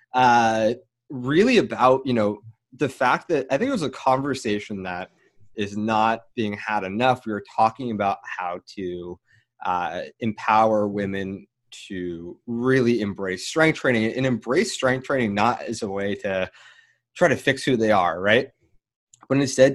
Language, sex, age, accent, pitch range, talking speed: English, male, 20-39, American, 100-125 Hz, 160 wpm